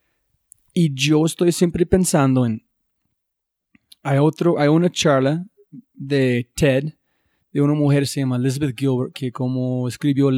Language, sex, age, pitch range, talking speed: Spanish, male, 20-39, 135-160 Hz, 140 wpm